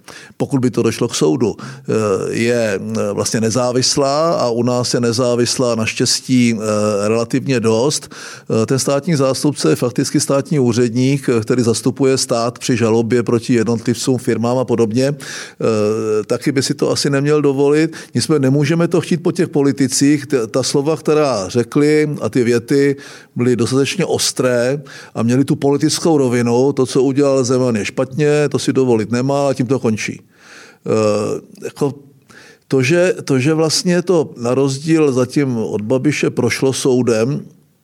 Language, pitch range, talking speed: Czech, 120-145 Hz, 140 wpm